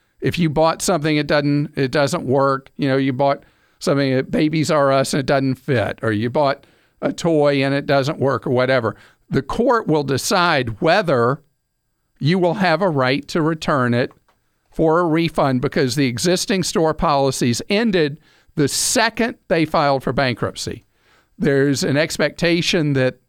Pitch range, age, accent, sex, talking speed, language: 135-170 Hz, 50-69, American, male, 165 wpm, English